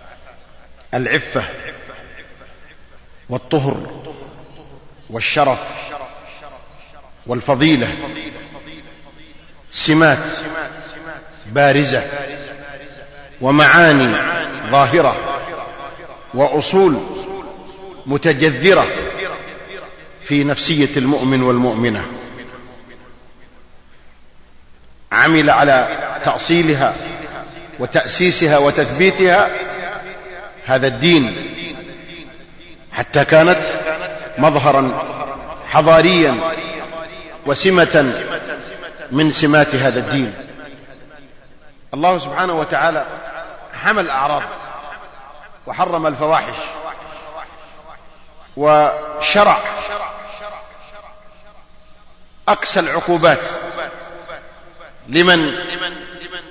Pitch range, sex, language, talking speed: 135-170 Hz, male, Arabic, 45 wpm